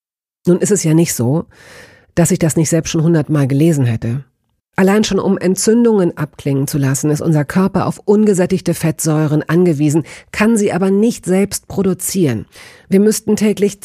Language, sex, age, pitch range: German, female, 40-59, 150-195 Hz